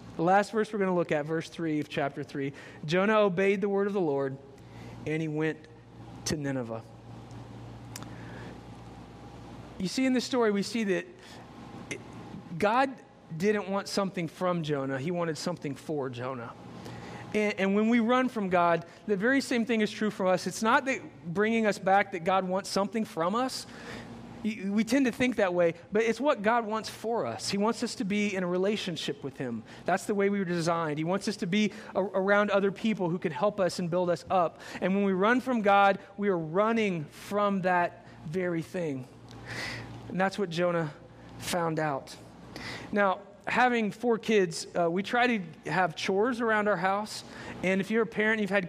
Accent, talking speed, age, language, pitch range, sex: American, 195 wpm, 40-59, English, 170-220 Hz, male